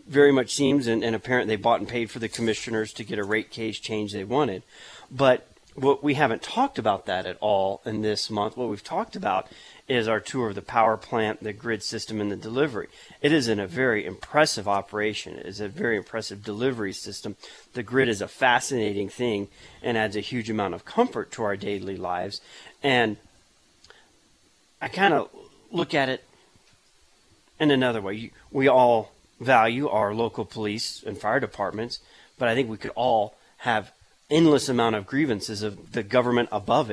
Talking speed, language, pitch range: 185 wpm, English, 105-130 Hz